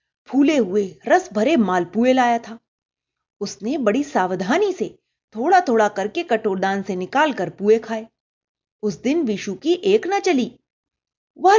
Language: Hindi